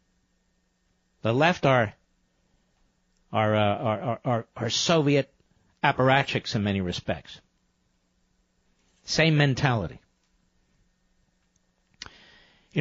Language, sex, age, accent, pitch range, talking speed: English, male, 60-79, American, 135-190 Hz, 75 wpm